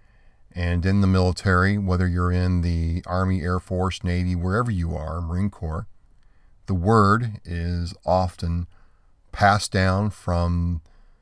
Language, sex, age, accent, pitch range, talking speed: English, male, 40-59, American, 85-95 Hz, 130 wpm